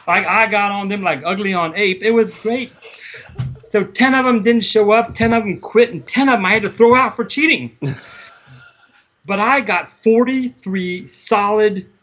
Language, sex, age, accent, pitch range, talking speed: English, male, 40-59, American, 150-220 Hz, 195 wpm